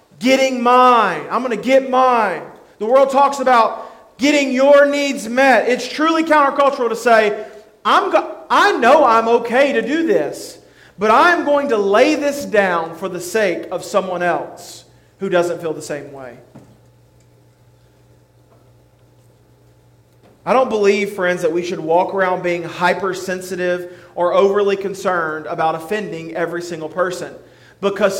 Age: 40-59